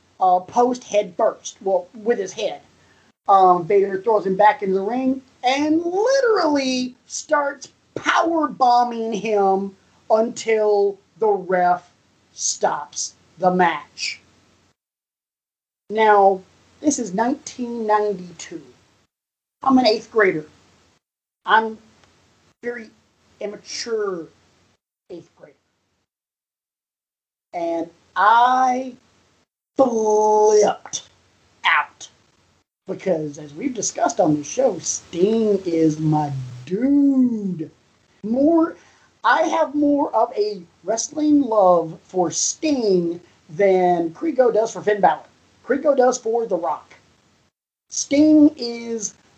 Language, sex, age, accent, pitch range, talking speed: English, male, 40-59, American, 180-255 Hz, 95 wpm